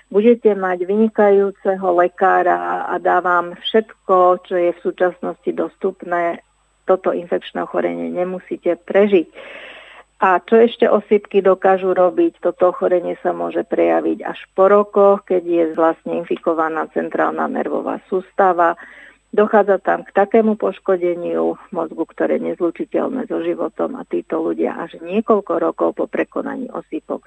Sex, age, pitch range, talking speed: female, 50-69, 170-200 Hz, 130 wpm